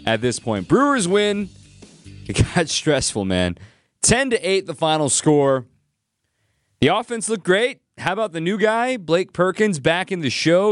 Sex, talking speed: male, 170 wpm